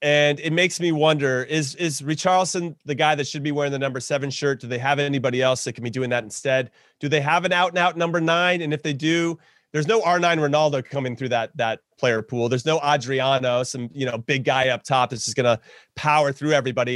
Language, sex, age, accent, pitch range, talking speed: English, male, 30-49, American, 125-160 Hz, 245 wpm